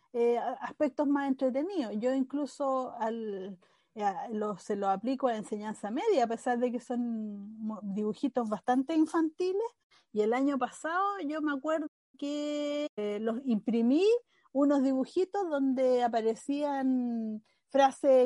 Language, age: Spanish, 40-59